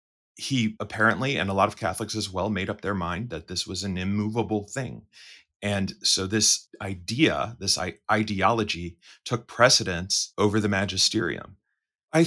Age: 30-49